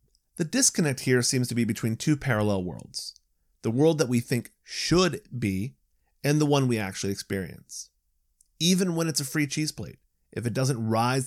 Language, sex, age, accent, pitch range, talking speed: English, male, 30-49, American, 95-130 Hz, 180 wpm